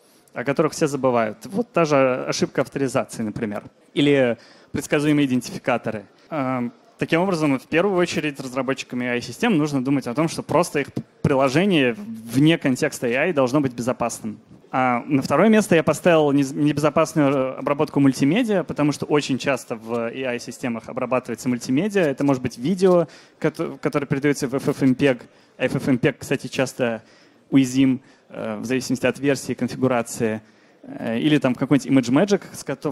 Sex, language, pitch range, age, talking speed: male, Russian, 125-150 Hz, 20-39, 130 wpm